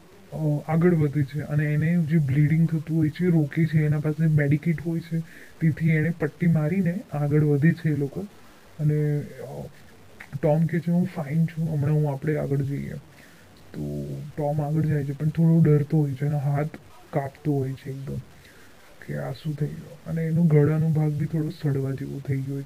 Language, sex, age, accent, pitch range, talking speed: Hindi, male, 20-39, native, 145-165 Hz, 120 wpm